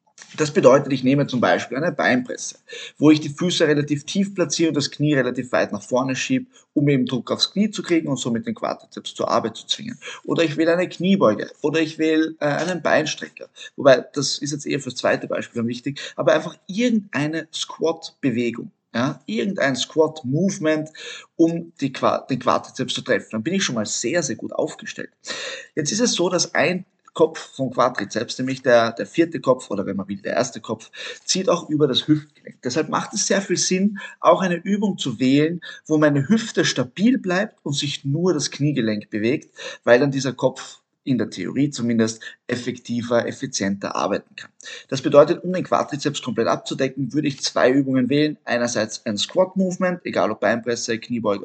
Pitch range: 125-175 Hz